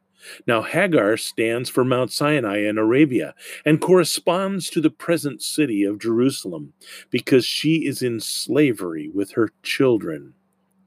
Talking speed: 135 wpm